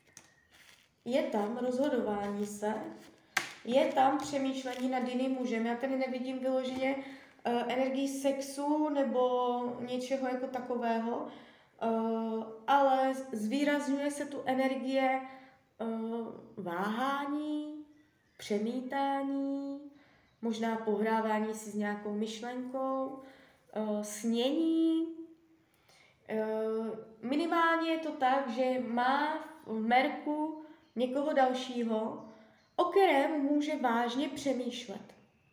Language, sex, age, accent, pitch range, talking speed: Czech, female, 20-39, native, 225-275 Hz, 85 wpm